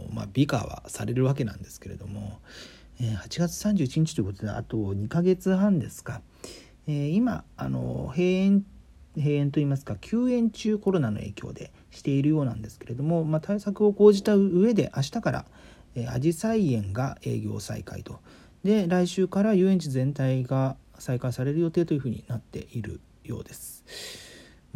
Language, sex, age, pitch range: Japanese, male, 40-59, 110-165 Hz